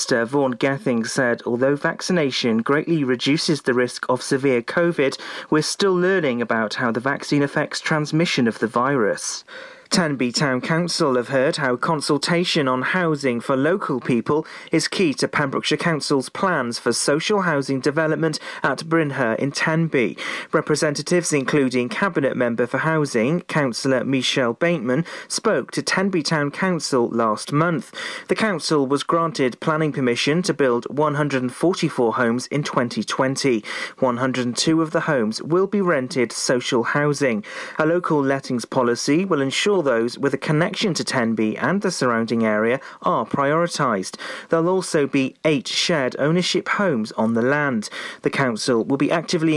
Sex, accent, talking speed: male, British, 150 wpm